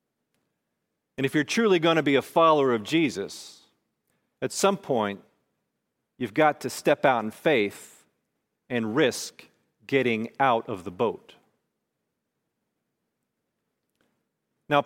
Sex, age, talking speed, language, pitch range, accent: male, 40-59, 115 wpm, English, 135-165 Hz, American